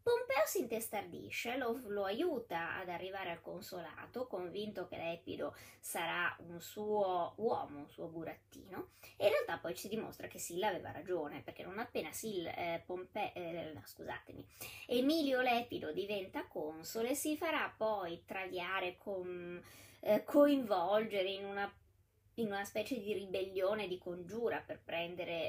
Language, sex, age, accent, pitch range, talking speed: Italian, female, 20-39, native, 180-245 Hz, 140 wpm